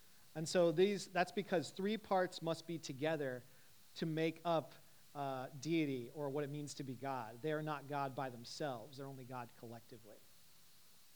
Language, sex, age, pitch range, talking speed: English, male, 40-59, 140-175 Hz, 170 wpm